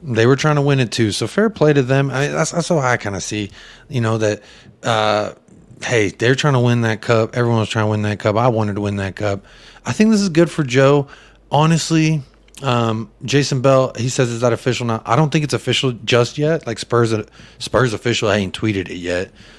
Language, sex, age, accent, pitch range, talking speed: English, male, 30-49, American, 105-125 Hz, 240 wpm